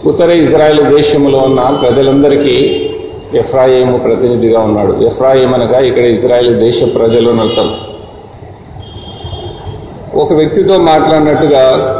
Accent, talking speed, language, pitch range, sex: native, 75 wpm, Telugu, 110-155 Hz, male